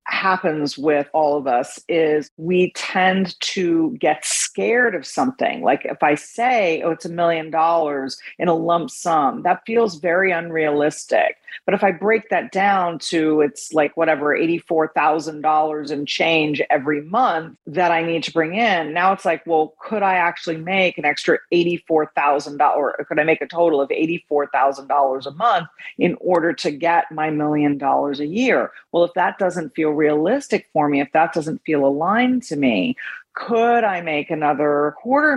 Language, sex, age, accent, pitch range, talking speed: English, female, 40-59, American, 150-190 Hz, 170 wpm